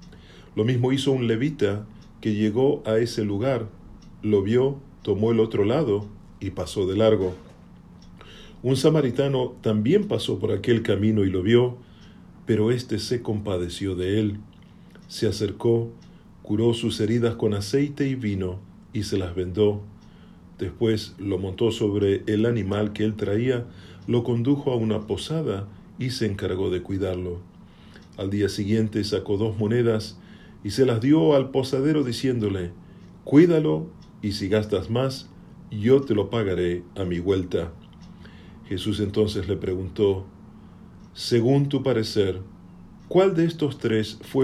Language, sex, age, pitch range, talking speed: Spanish, male, 40-59, 95-120 Hz, 140 wpm